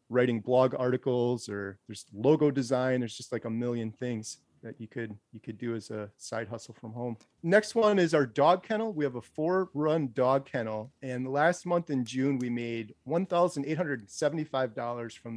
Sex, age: male, 30-49